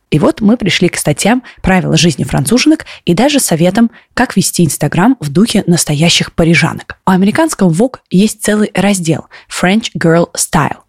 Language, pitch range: Russian, 165-215 Hz